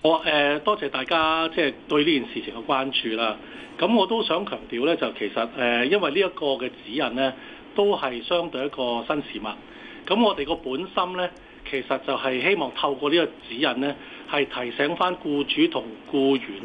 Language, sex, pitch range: Chinese, male, 130-180 Hz